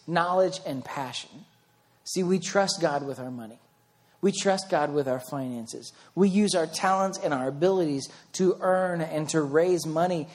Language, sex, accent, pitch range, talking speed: English, male, American, 145-185 Hz, 170 wpm